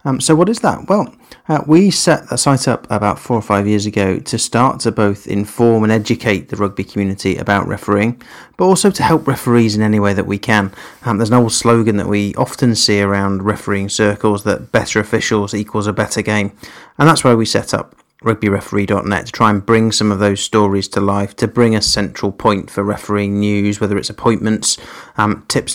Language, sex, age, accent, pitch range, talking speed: English, male, 30-49, British, 105-120 Hz, 210 wpm